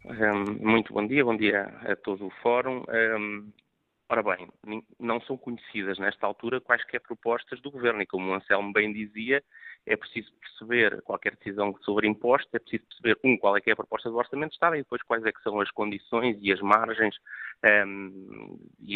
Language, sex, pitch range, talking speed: Portuguese, male, 105-130 Hz, 195 wpm